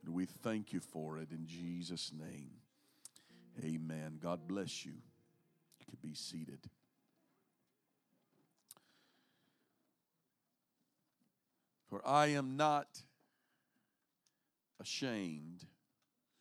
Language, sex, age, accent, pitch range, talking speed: English, male, 50-69, American, 115-145 Hz, 80 wpm